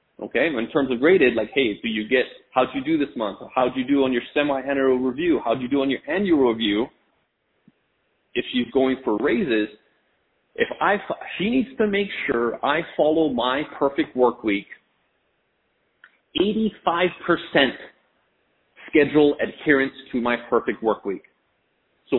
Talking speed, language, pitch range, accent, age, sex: 150 wpm, English, 125-195 Hz, American, 30-49, male